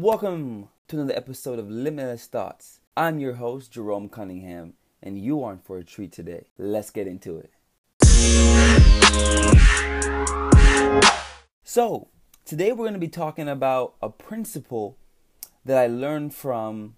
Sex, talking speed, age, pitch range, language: male, 135 wpm, 20-39, 100-135 Hz, English